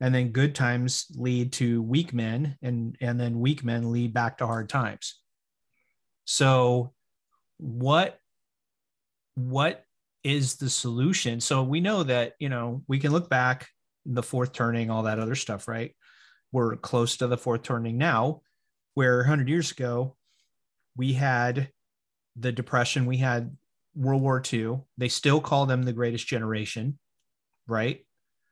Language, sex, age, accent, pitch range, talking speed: English, male, 30-49, American, 120-140 Hz, 150 wpm